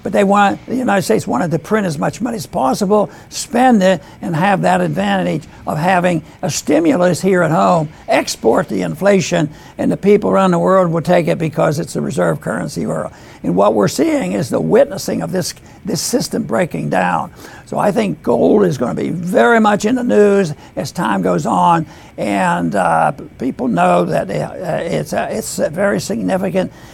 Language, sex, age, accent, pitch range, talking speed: English, male, 60-79, American, 175-210 Hz, 190 wpm